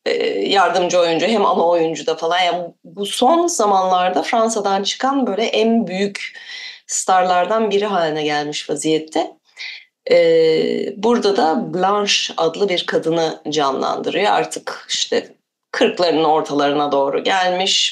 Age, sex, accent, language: 30-49, female, native, Turkish